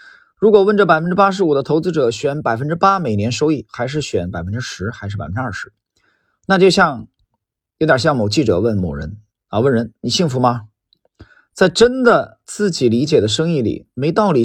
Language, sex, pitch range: Chinese, male, 105-170 Hz